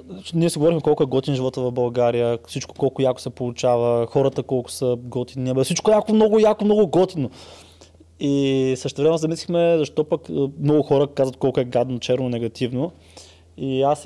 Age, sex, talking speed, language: 20-39, male, 165 wpm, Bulgarian